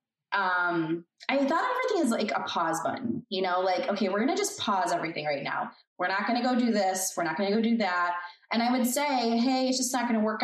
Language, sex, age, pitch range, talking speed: English, female, 20-39, 195-260 Hz, 265 wpm